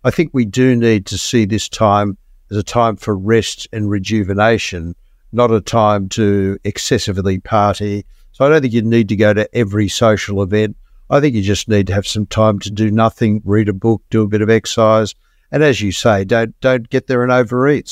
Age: 60-79